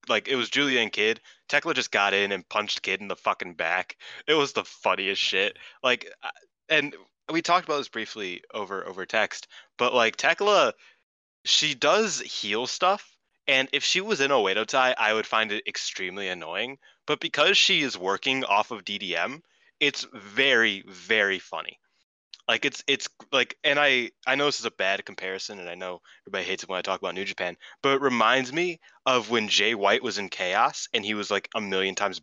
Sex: male